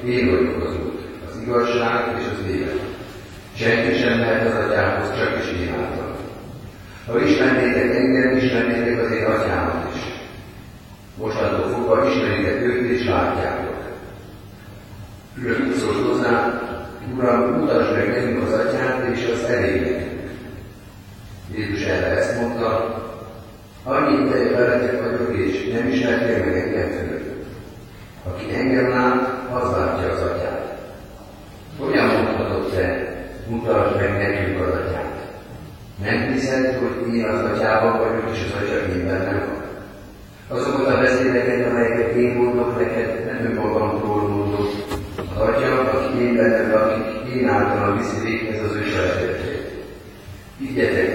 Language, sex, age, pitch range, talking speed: Hungarian, male, 40-59, 100-120 Hz, 125 wpm